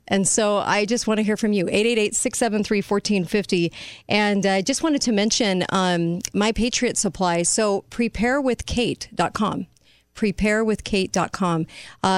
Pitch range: 175-210 Hz